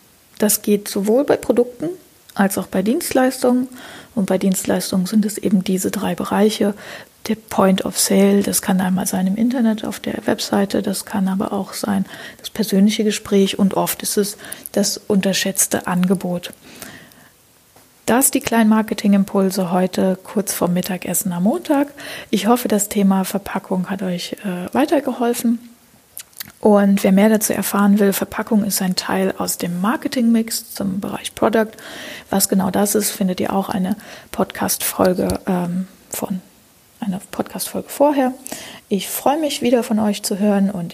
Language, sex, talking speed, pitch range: German, female, 150 wpm, 190-230 Hz